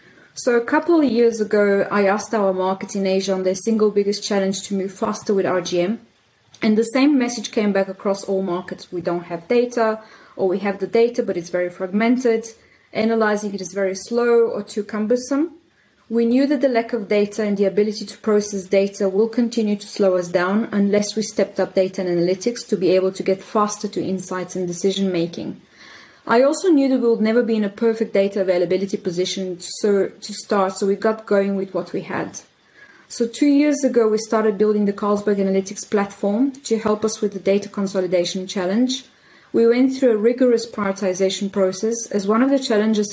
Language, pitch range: English, 190-225 Hz